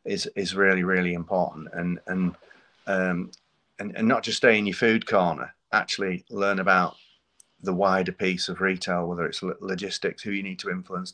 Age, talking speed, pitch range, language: 30-49, 180 wpm, 90-100 Hz, English